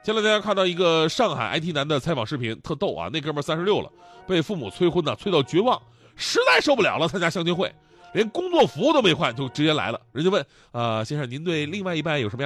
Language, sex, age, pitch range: Chinese, male, 30-49, 140-230 Hz